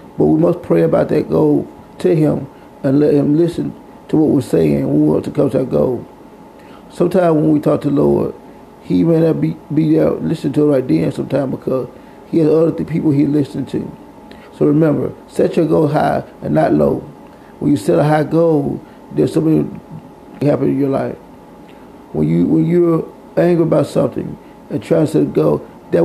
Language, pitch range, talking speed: English, 135-160 Hz, 205 wpm